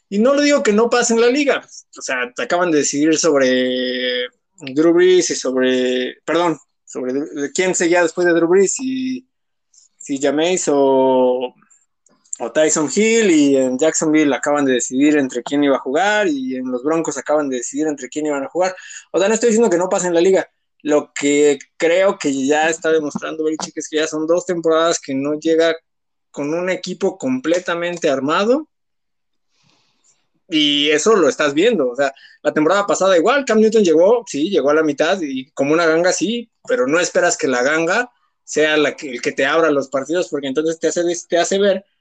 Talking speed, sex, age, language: 195 wpm, male, 20-39, Spanish